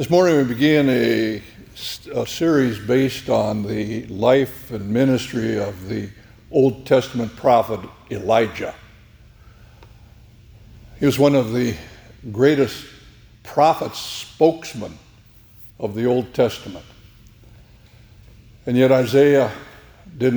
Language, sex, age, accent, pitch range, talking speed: English, male, 60-79, American, 110-130 Hz, 105 wpm